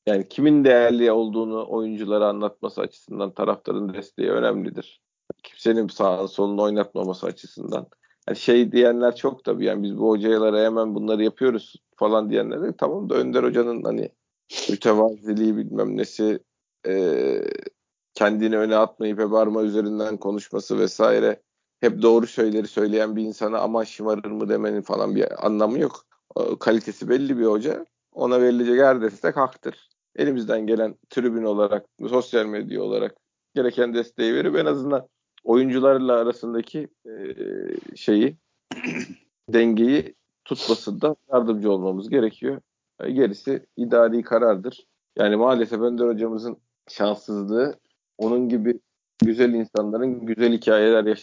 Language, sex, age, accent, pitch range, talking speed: Turkish, male, 40-59, native, 105-120 Hz, 120 wpm